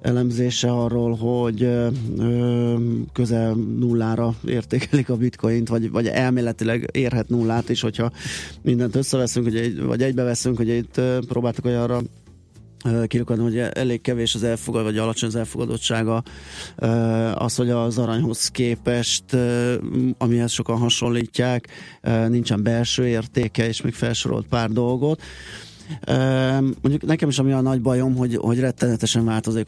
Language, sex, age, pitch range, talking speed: Hungarian, male, 20-39, 115-125 Hz, 125 wpm